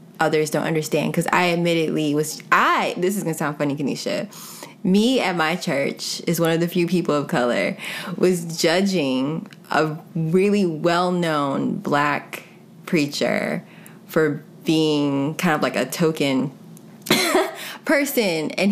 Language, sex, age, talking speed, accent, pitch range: English, female, 20-39, 135 wpm, American, 155-220 Hz